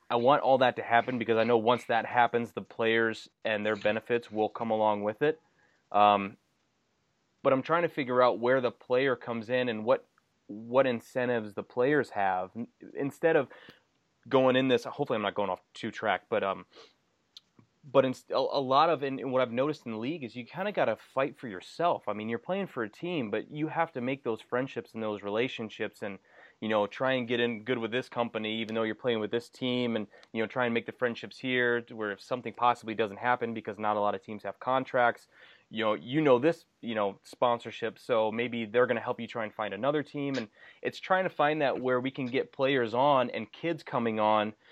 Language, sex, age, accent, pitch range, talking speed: English, male, 20-39, American, 110-130 Hz, 230 wpm